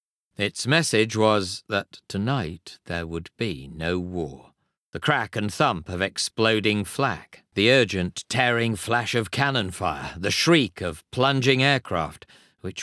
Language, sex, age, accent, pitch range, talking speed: English, male, 50-69, British, 90-115 Hz, 140 wpm